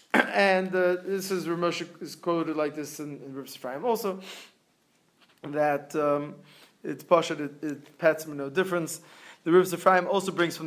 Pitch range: 145-175 Hz